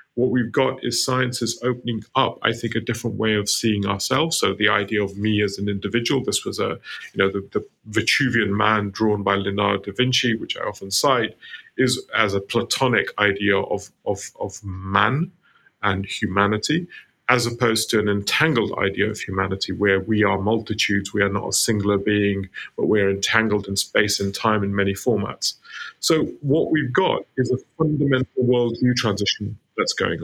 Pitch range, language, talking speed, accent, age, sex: 100-125 Hz, English, 180 wpm, British, 30-49, male